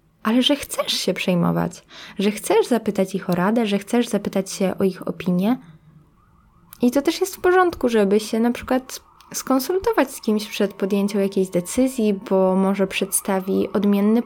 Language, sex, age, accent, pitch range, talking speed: Polish, female, 10-29, native, 205-255 Hz, 165 wpm